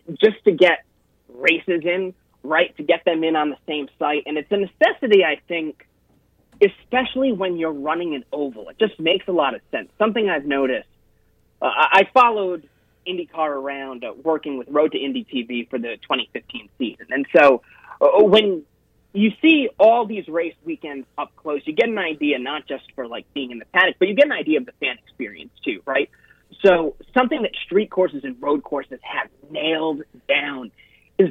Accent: American